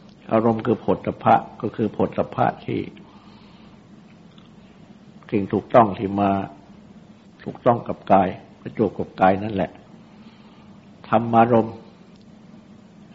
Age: 60-79